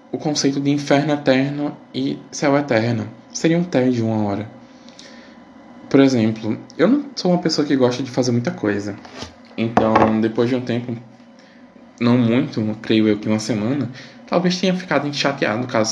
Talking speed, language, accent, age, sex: 160 wpm, Portuguese, Brazilian, 20-39, male